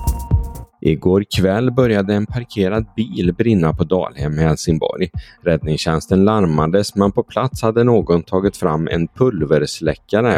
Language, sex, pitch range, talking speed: Swedish, male, 85-110 Hz, 125 wpm